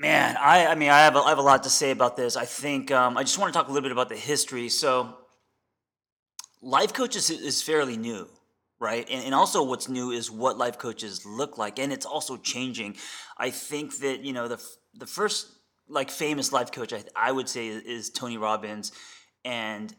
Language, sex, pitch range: English, male, 120-145 Hz